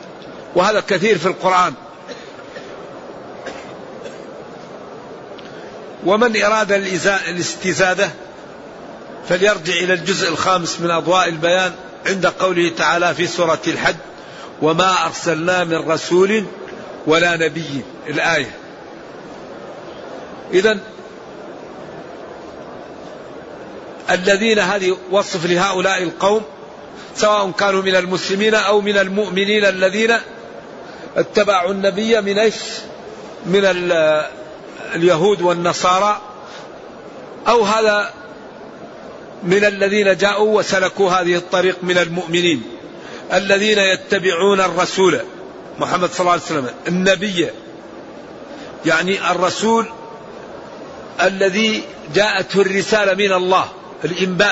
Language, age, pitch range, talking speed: Arabic, 50-69, 175-200 Hz, 85 wpm